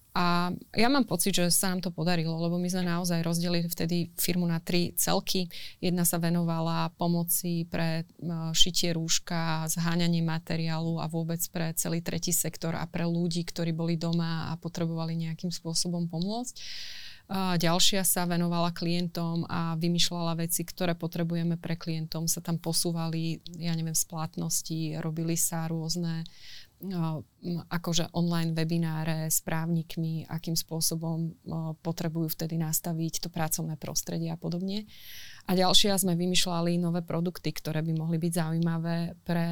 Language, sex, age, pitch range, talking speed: Slovak, female, 20-39, 165-180 Hz, 145 wpm